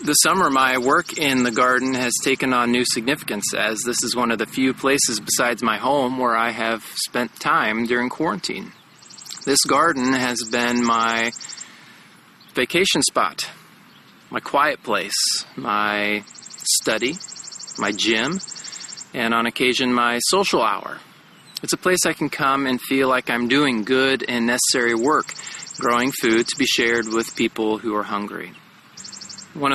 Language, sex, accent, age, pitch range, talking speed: English, male, American, 20-39, 115-135 Hz, 155 wpm